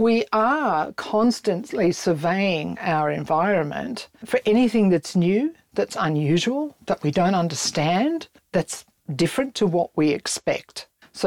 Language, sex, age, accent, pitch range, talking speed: English, female, 50-69, Australian, 160-215 Hz, 120 wpm